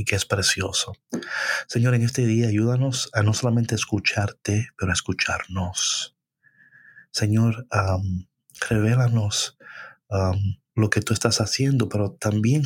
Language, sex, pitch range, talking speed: Spanish, male, 100-115 Hz, 130 wpm